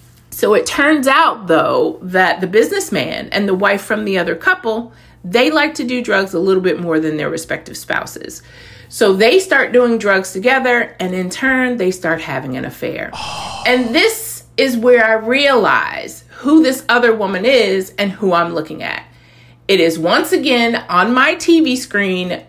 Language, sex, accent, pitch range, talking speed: English, female, American, 180-255 Hz, 175 wpm